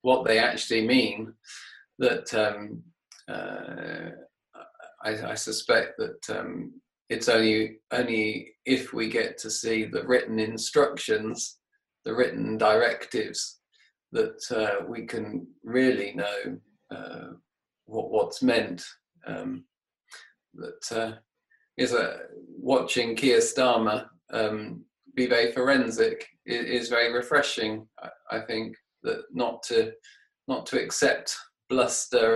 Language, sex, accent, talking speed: English, male, British, 115 wpm